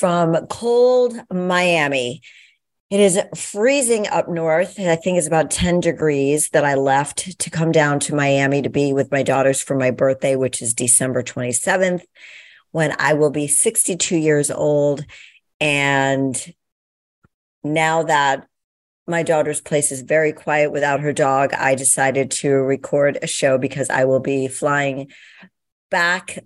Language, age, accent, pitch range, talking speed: English, 50-69, American, 135-170 Hz, 145 wpm